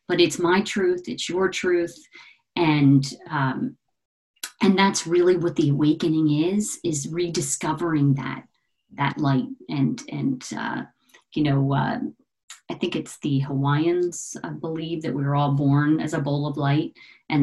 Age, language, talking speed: 40-59, English, 155 wpm